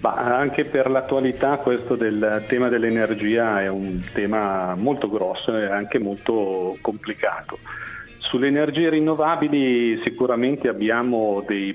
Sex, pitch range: male, 105-125 Hz